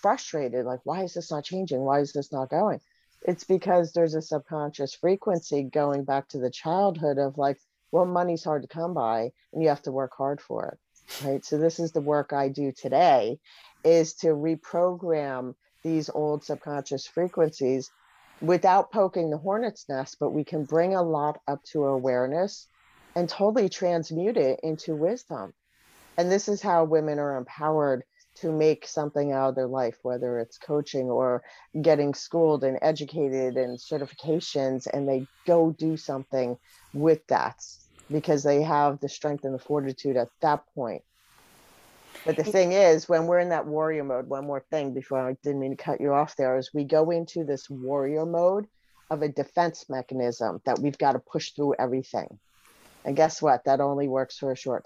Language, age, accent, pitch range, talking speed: English, 40-59, American, 135-165 Hz, 180 wpm